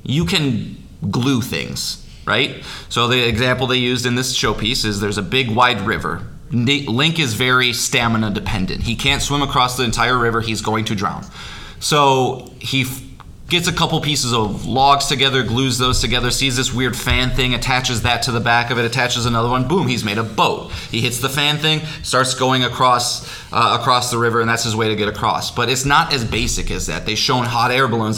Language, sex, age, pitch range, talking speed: English, male, 20-39, 115-135 Hz, 210 wpm